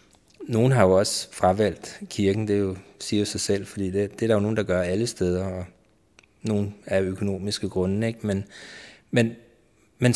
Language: Danish